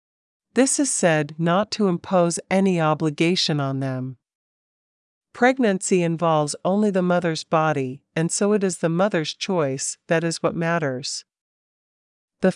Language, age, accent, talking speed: English, 50-69, American, 135 wpm